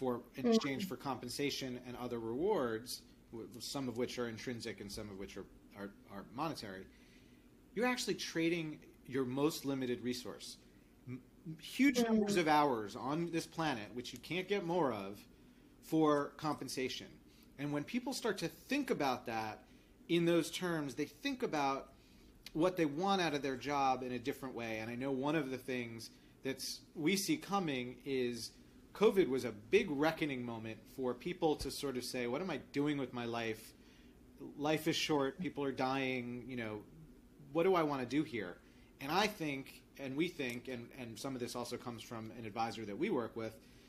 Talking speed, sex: 185 wpm, male